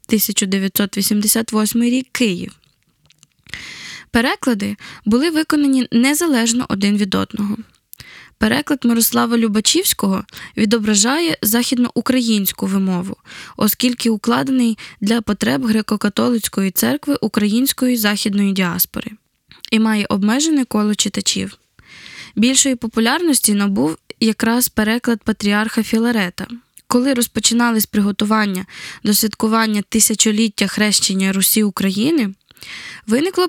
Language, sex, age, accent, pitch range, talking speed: Ukrainian, female, 10-29, native, 210-250 Hz, 85 wpm